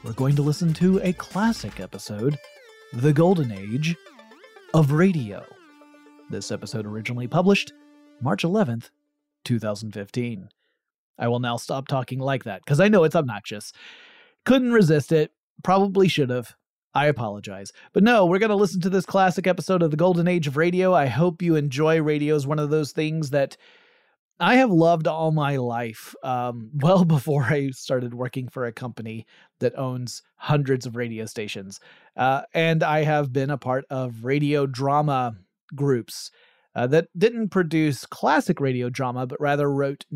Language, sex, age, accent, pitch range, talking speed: English, male, 30-49, American, 120-165 Hz, 165 wpm